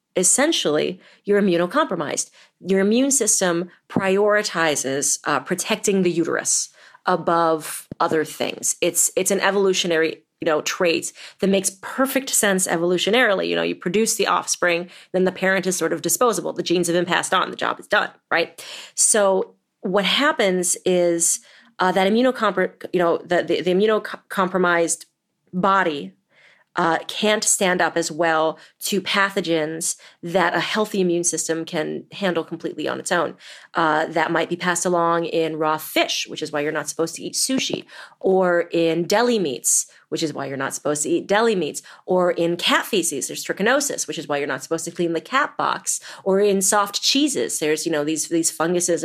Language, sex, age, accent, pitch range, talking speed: English, female, 30-49, American, 165-200 Hz, 175 wpm